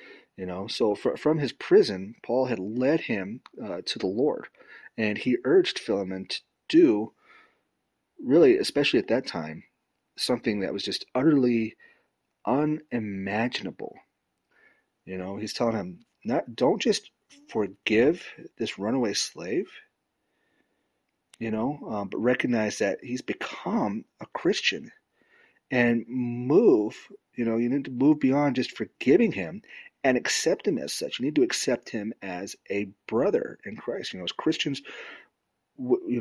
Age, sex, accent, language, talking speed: 30-49, male, American, English, 145 wpm